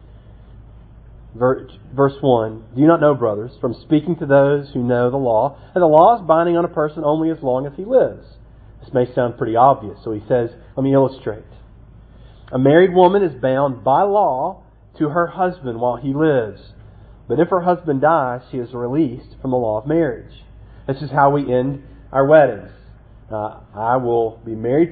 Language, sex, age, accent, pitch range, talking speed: English, male, 40-59, American, 115-155 Hz, 190 wpm